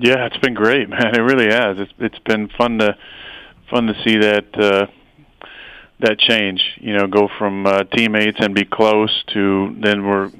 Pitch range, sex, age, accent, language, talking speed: 100-110 Hz, male, 30-49, American, English, 185 wpm